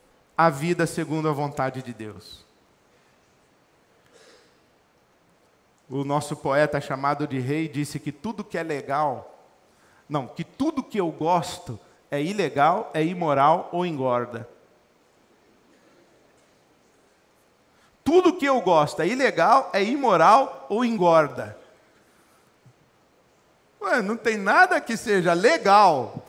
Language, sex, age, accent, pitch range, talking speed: Portuguese, male, 40-59, Brazilian, 125-180 Hz, 105 wpm